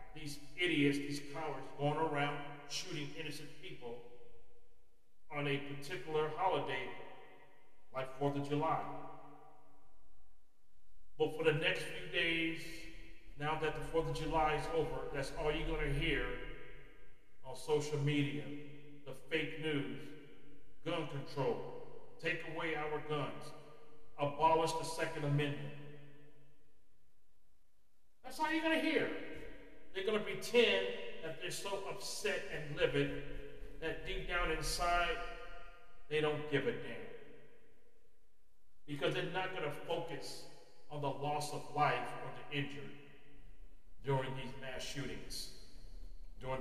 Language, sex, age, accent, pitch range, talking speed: English, male, 40-59, American, 140-175 Hz, 125 wpm